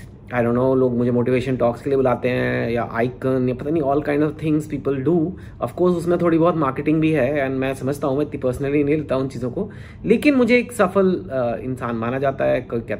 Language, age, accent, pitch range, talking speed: Hindi, 30-49, native, 115-150 Hz, 225 wpm